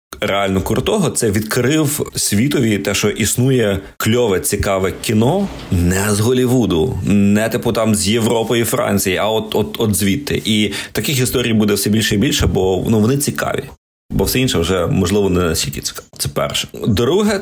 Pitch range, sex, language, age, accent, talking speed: 95-110 Hz, male, Ukrainian, 30-49, native, 170 wpm